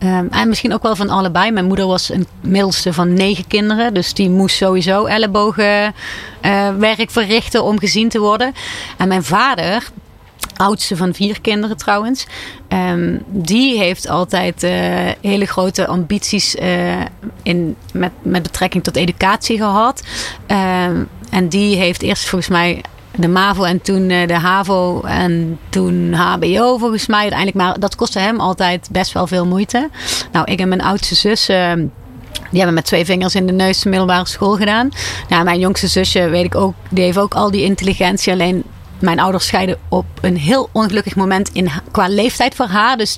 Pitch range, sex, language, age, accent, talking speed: 180-205 Hz, female, Dutch, 30-49, Dutch, 165 wpm